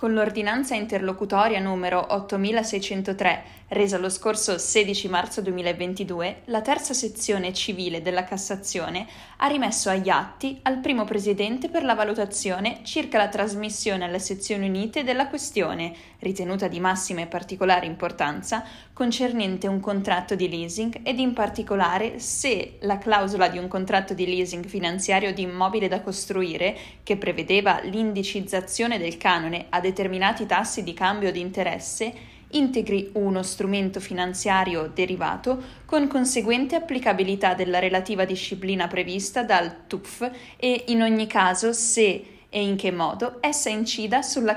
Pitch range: 185-225 Hz